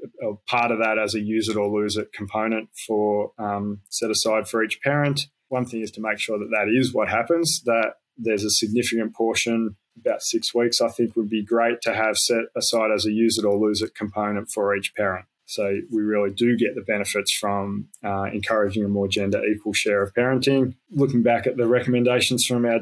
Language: English